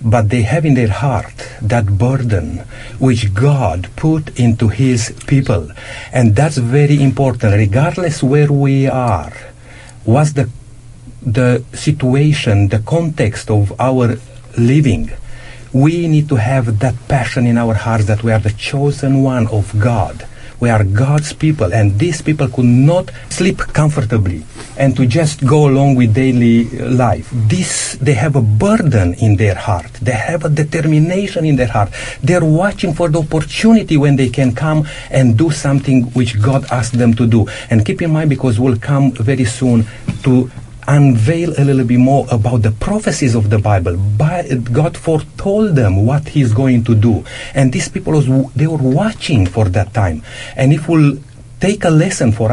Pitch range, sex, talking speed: 115-145 Hz, male, 165 wpm